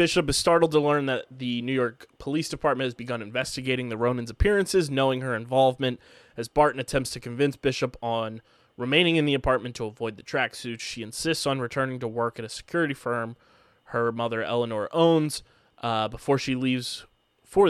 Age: 20-39